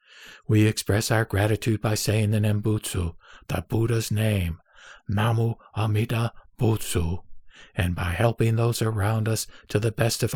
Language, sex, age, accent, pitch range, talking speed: English, male, 60-79, American, 100-130 Hz, 140 wpm